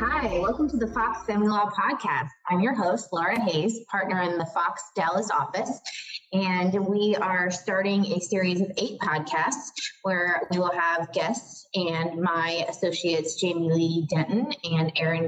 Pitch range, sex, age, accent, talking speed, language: 175-210 Hz, female, 20-39, American, 160 wpm, English